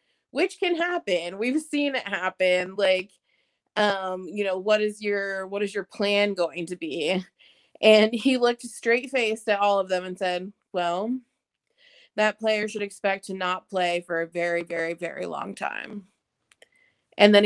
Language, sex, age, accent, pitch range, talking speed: English, female, 30-49, American, 190-235 Hz, 165 wpm